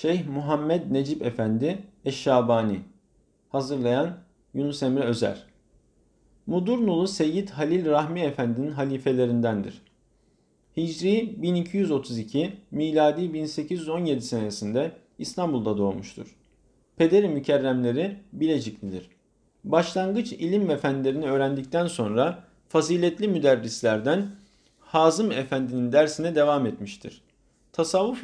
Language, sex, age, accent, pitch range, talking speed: Turkish, male, 50-69, native, 130-175 Hz, 80 wpm